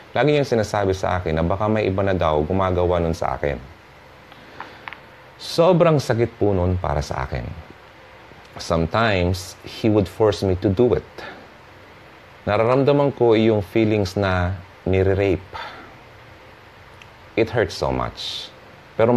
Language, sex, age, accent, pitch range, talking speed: Filipino, male, 30-49, native, 90-120 Hz, 125 wpm